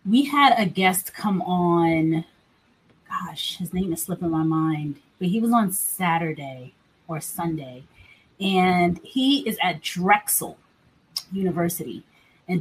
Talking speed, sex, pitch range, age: 130 wpm, female, 175-225 Hz, 30-49